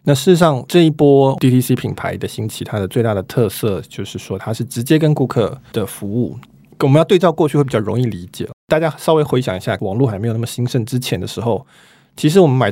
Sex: male